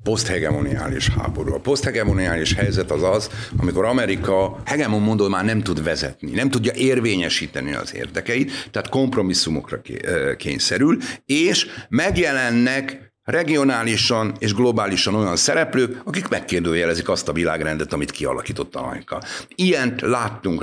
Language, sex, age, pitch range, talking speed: Hungarian, male, 60-79, 95-125 Hz, 115 wpm